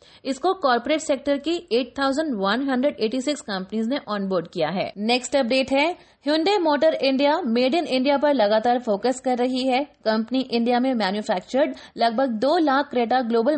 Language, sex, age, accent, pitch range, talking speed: Hindi, female, 20-39, native, 220-280 Hz, 135 wpm